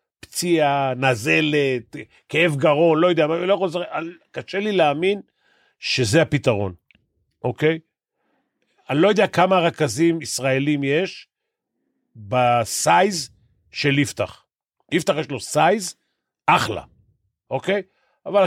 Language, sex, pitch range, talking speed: Hebrew, male, 115-155 Hz, 95 wpm